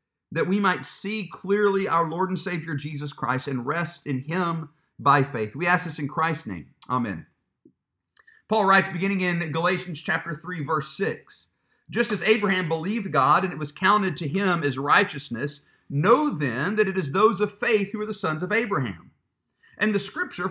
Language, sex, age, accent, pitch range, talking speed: English, male, 50-69, American, 150-210 Hz, 185 wpm